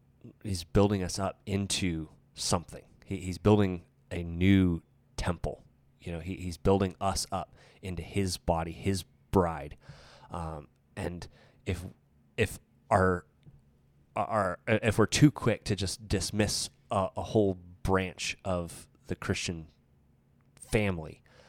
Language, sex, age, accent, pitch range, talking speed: English, male, 30-49, American, 85-100 Hz, 125 wpm